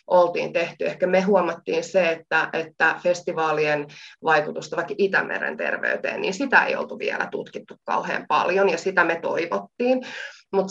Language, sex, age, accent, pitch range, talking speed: Finnish, female, 20-39, native, 155-185 Hz, 145 wpm